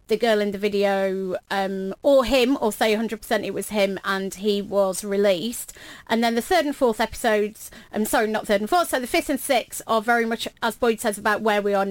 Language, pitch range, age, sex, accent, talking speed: English, 205-235 Hz, 30-49, female, British, 230 wpm